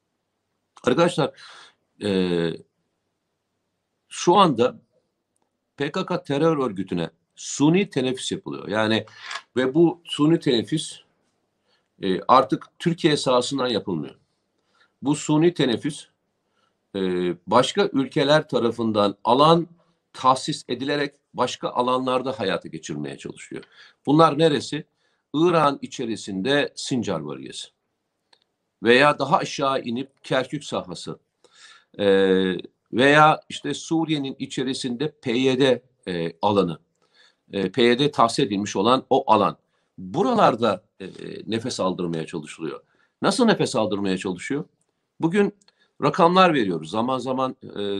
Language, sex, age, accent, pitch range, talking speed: Turkish, male, 50-69, native, 100-150 Hz, 90 wpm